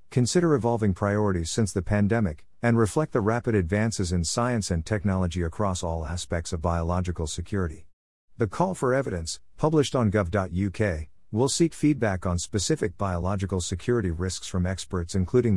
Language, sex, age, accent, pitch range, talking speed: English, male, 50-69, American, 85-115 Hz, 150 wpm